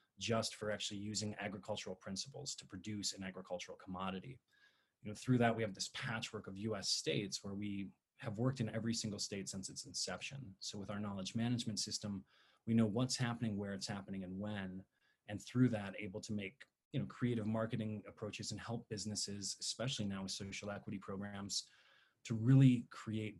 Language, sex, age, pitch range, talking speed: English, male, 20-39, 100-115 Hz, 180 wpm